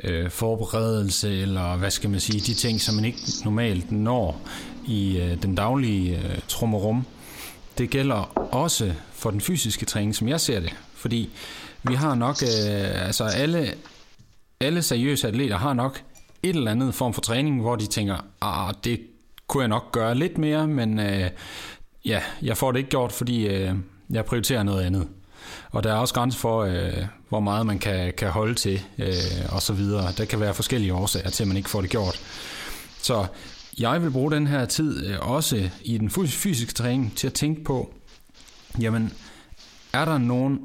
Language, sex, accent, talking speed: Danish, male, native, 185 wpm